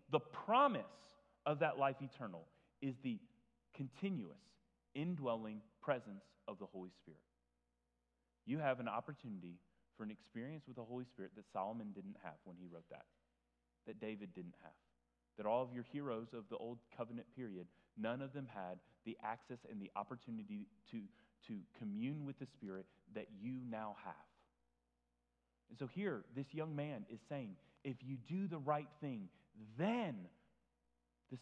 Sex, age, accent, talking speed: male, 30-49, American, 160 wpm